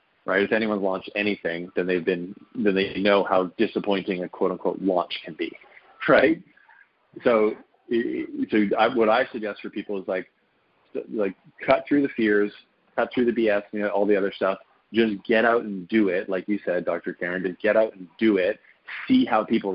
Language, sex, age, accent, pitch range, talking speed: English, male, 30-49, American, 95-110 Hz, 195 wpm